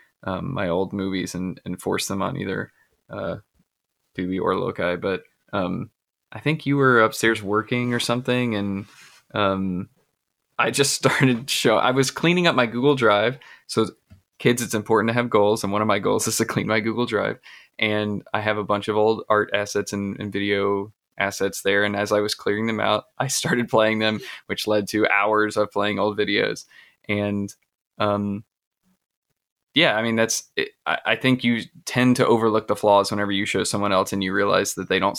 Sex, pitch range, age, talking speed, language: male, 100-115 Hz, 20-39, 195 wpm, English